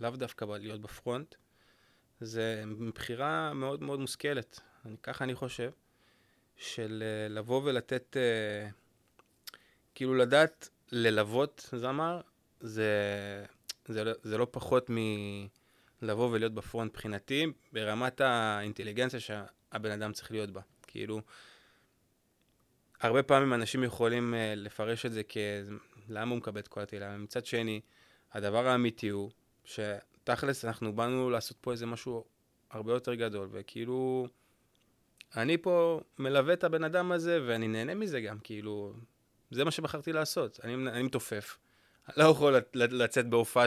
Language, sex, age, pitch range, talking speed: Hebrew, male, 20-39, 105-130 Hz, 125 wpm